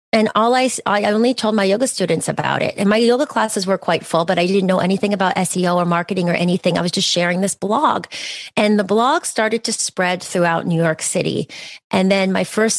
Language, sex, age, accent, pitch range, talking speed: English, female, 30-49, American, 170-215 Hz, 230 wpm